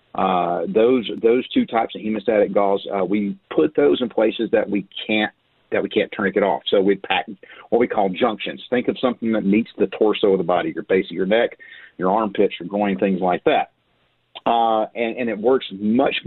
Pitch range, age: 100-115 Hz, 40-59